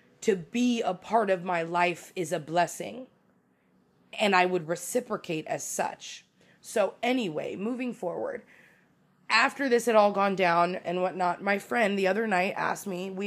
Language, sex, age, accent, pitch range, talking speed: English, female, 20-39, American, 185-225 Hz, 165 wpm